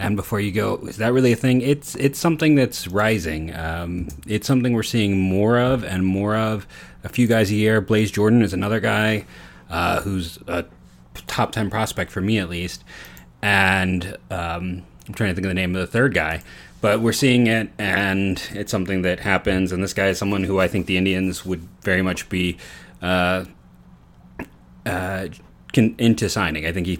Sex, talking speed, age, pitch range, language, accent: male, 195 wpm, 30-49, 90-110 Hz, English, American